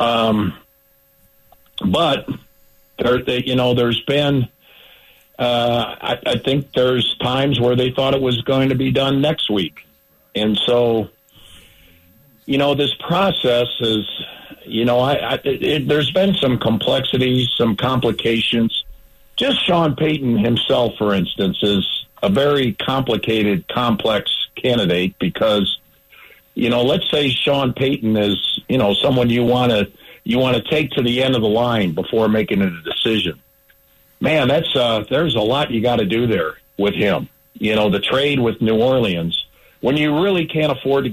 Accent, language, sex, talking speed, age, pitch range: American, English, male, 155 wpm, 50-69, 110-135 Hz